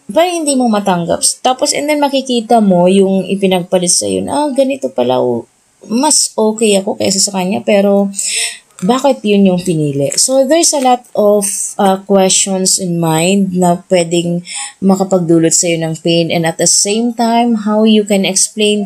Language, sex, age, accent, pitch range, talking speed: English, female, 20-39, Filipino, 175-220 Hz, 160 wpm